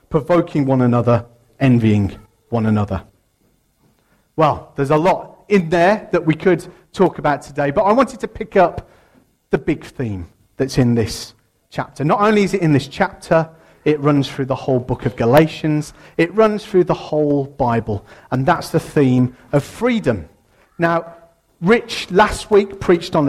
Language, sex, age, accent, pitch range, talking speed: English, male, 40-59, British, 135-180 Hz, 165 wpm